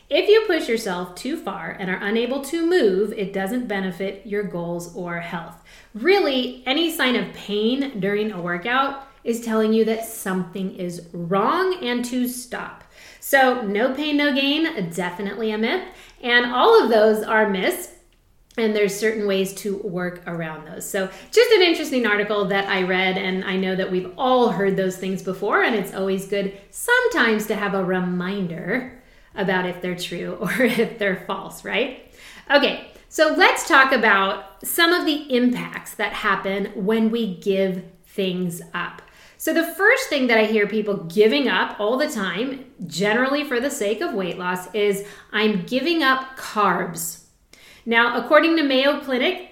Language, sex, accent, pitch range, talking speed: English, female, American, 195-260 Hz, 170 wpm